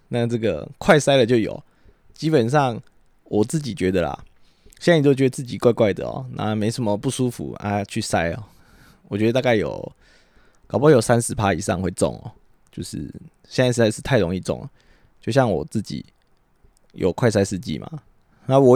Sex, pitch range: male, 105-135 Hz